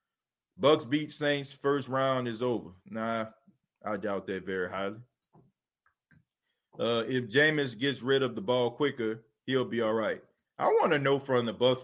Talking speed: 170 wpm